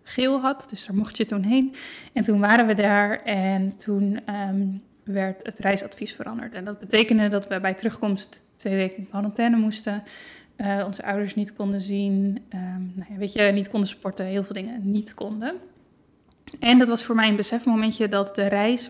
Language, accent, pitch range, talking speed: Dutch, Dutch, 200-225 Hz, 190 wpm